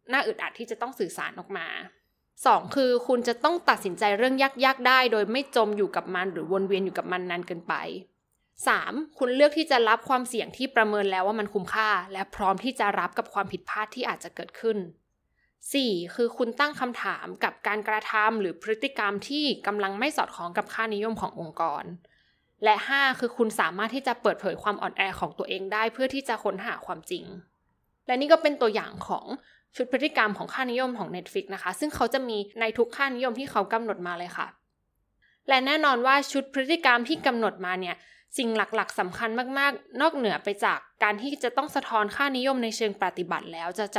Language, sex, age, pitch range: Thai, female, 20-39, 200-260 Hz